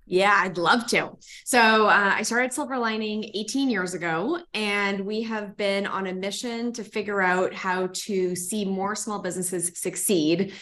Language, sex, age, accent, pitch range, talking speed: English, female, 20-39, American, 175-210 Hz, 170 wpm